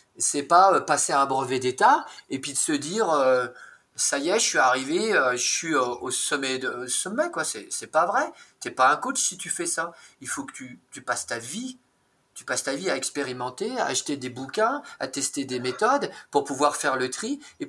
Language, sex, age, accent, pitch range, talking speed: French, male, 30-49, French, 130-175 Hz, 215 wpm